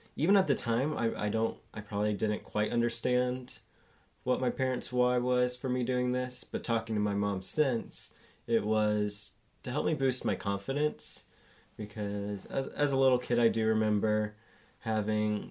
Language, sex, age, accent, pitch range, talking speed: English, male, 20-39, American, 105-125 Hz, 175 wpm